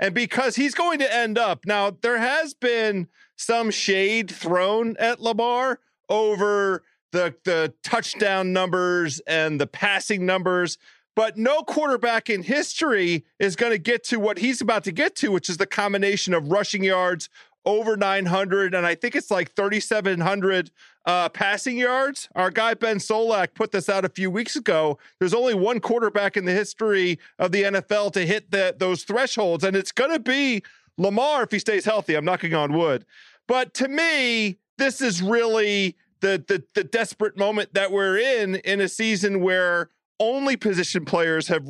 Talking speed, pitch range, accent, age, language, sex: 170 wpm, 185-230 Hz, American, 40-59, English, male